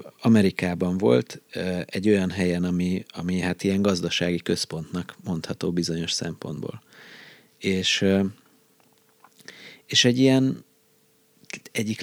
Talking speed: 95 wpm